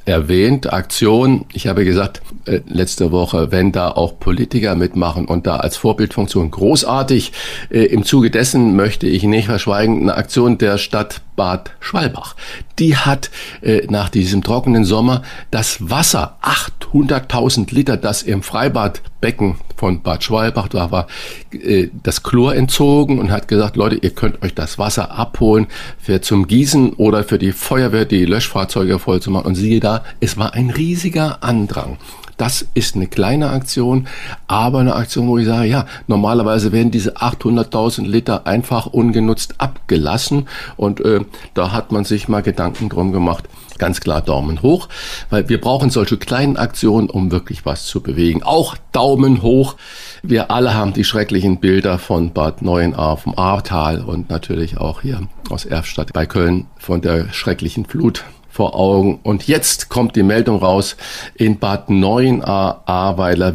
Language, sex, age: German, male, 50-69